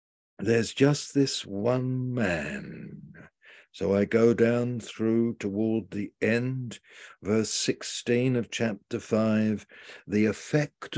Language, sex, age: English, male, 60-79